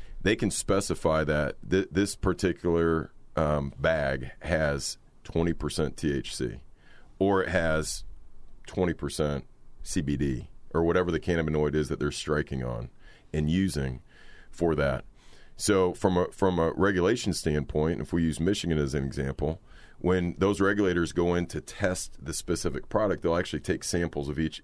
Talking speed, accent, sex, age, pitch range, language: 140 wpm, American, male, 40-59, 75-90 Hz, English